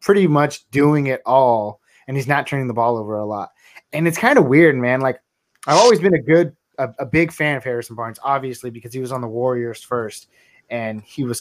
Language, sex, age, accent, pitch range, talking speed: English, male, 20-39, American, 125-165 Hz, 230 wpm